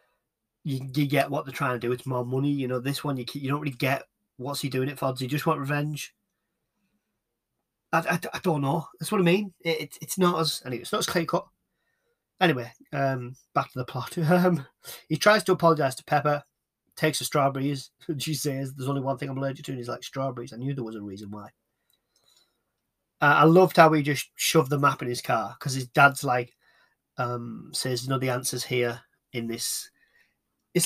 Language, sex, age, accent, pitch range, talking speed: English, male, 30-49, British, 125-160 Hz, 220 wpm